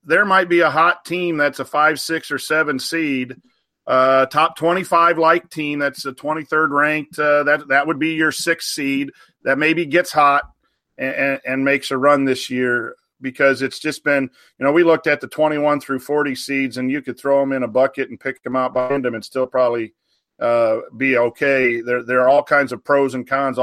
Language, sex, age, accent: English, male, 40-59, American